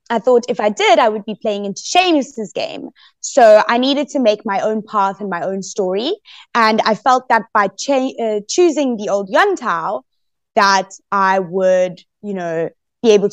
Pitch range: 195-265 Hz